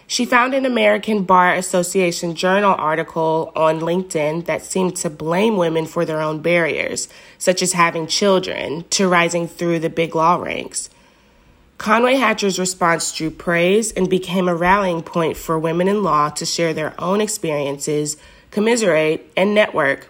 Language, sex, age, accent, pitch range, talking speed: English, female, 20-39, American, 165-195 Hz, 155 wpm